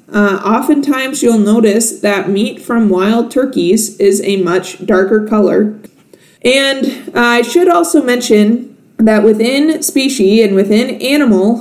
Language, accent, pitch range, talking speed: English, American, 200-235 Hz, 130 wpm